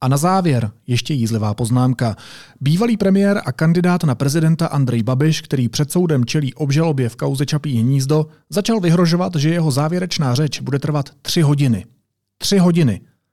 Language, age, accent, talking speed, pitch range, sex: Czech, 40-59, native, 160 wpm, 120-155 Hz, male